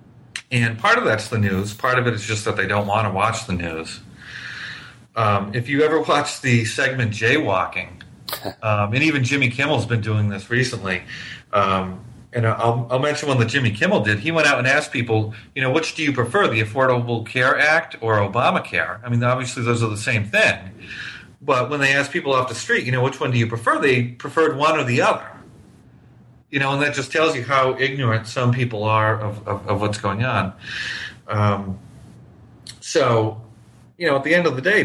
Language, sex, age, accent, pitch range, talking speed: English, male, 40-59, American, 110-130 Hz, 210 wpm